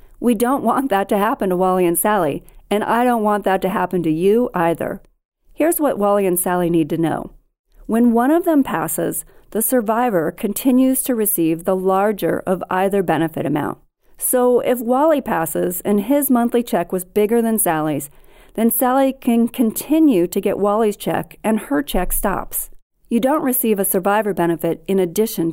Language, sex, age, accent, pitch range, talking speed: English, female, 40-59, American, 175-245 Hz, 180 wpm